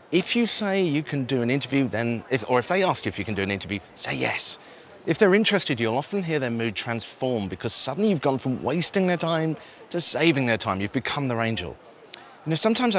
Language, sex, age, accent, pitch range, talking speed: English, male, 30-49, British, 110-160 Hz, 230 wpm